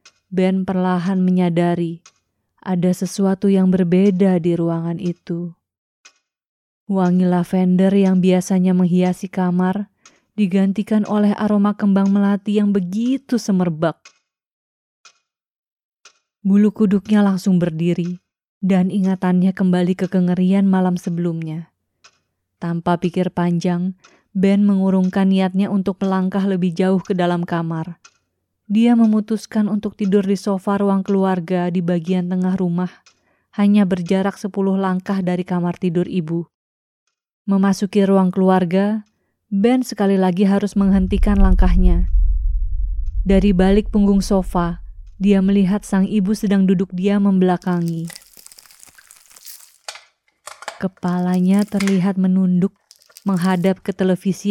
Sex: female